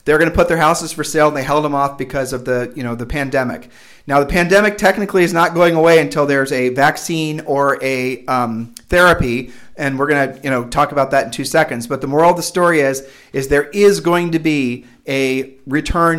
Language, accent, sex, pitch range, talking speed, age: English, American, male, 135-170 Hz, 235 wpm, 40-59